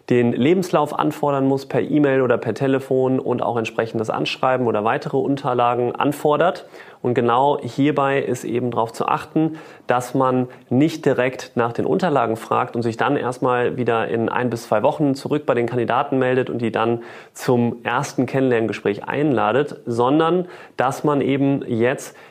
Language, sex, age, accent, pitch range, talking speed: German, male, 30-49, German, 115-145 Hz, 160 wpm